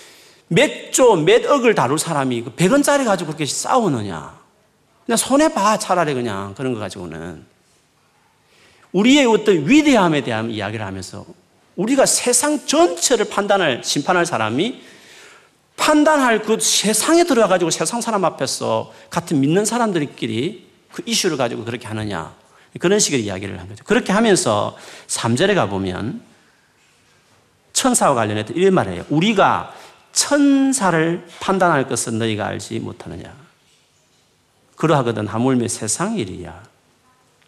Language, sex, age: Korean, male, 40-59